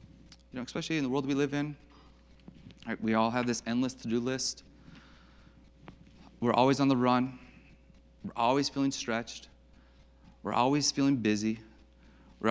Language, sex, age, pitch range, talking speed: English, male, 30-49, 105-140 Hz, 150 wpm